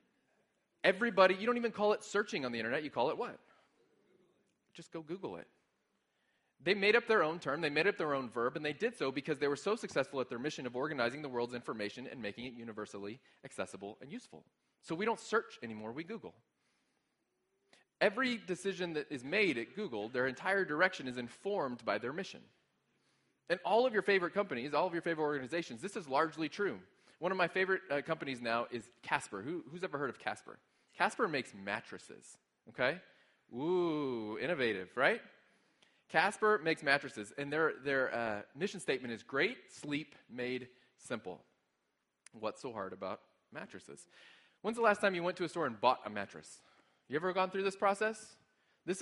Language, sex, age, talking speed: English, male, 30-49, 185 wpm